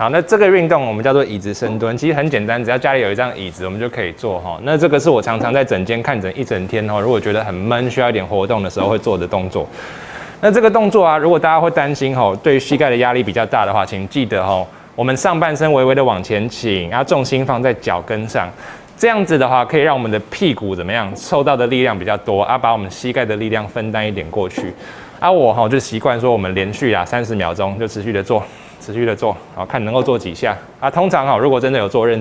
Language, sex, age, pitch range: Chinese, male, 20-39, 105-145 Hz